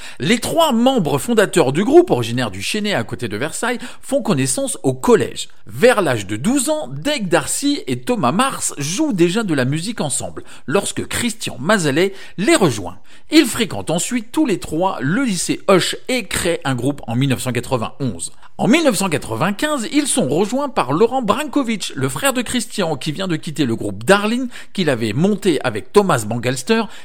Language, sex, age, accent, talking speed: French, male, 50-69, French, 175 wpm